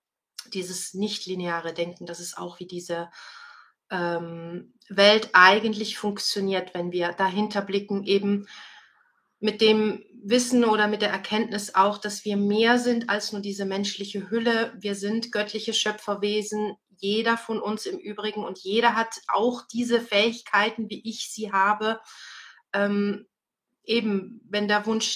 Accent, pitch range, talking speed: German, 190-220 Hz, 135 wpm